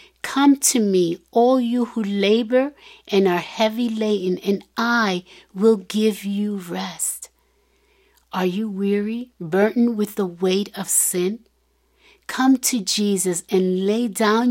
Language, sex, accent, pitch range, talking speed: English, female, American, 190-240 Hz, 130 wpm